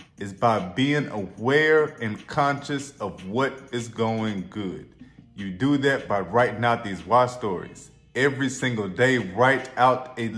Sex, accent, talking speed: male, American, 150 wpm